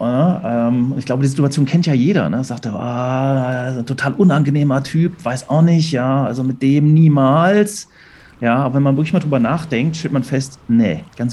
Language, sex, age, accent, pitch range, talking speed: German, male, 40-59, German, 110-150 Hz, 205 wpm